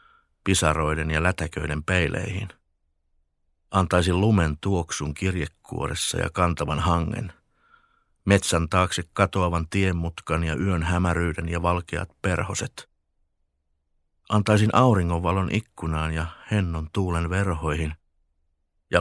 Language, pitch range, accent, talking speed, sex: Finnish, 75-95 Hz, native, 95 wpm, male